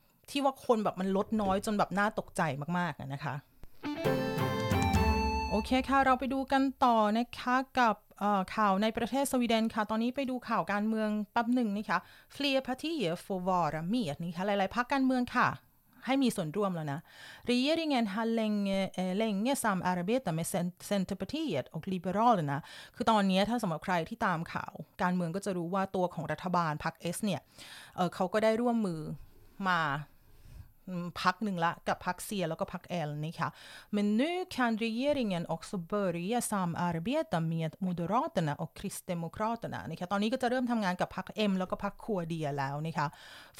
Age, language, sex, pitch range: 30-49, Thai, female, 175-225 Hz